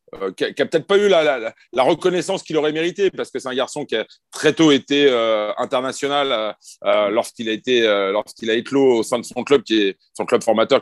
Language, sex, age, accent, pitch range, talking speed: French, male, 30-49, French, 115-180 Hz, 250 wpm